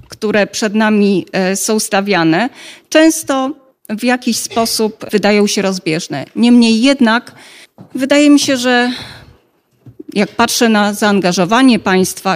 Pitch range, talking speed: 200-260 Hz, 110 wpm